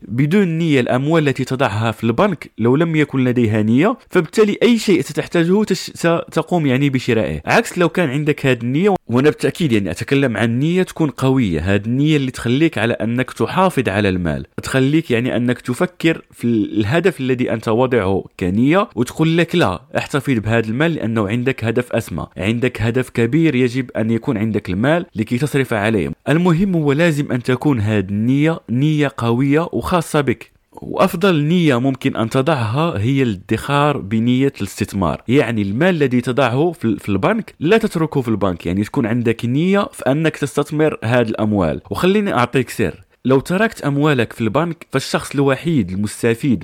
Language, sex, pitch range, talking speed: Arabic, male, 115-160 Hz, 160 wpm